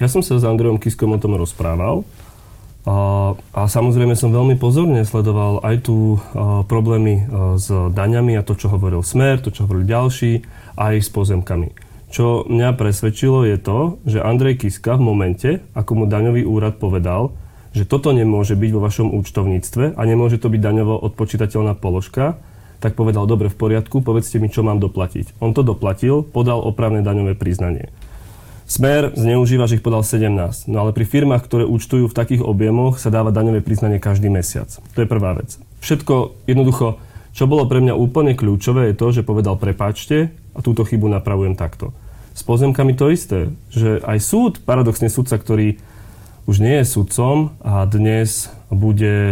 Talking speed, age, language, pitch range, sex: 170 wpm, 30-49, Slovak, 105-120 Hz, male